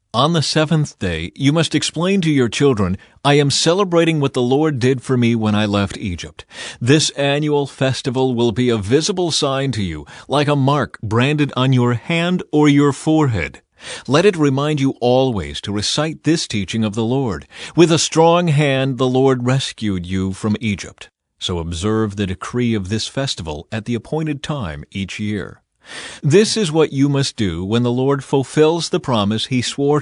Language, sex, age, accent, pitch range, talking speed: English, male, 40-59, American, 105-145 Hz, 185 wpm